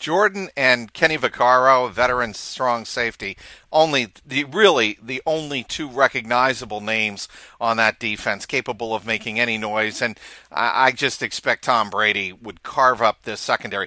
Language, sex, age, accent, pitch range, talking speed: English, male, 50-69, American, 120-160 Hz, 145 wpm